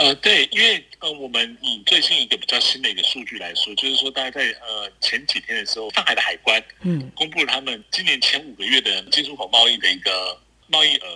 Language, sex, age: Chinese, male, 30-49